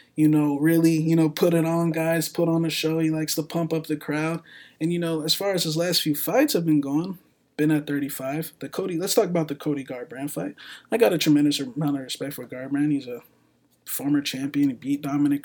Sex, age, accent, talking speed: male, 20-39, American, 235 wpm